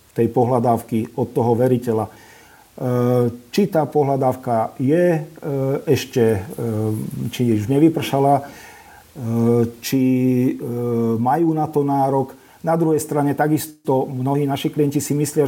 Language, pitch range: Slovak, 120-150 Hz